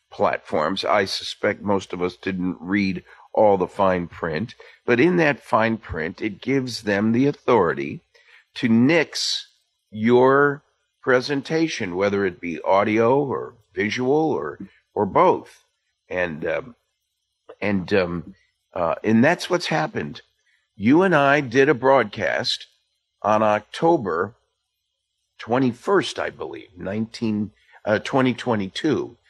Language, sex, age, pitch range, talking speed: English, male, 50-69, 105-140 Hz, 120 wpm